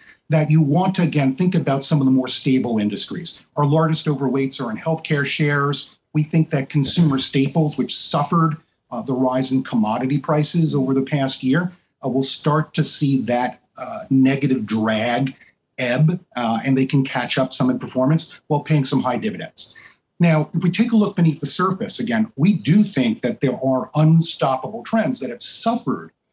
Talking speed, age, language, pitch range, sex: 185 wpm, 40-59, English, 130-165 Hz, male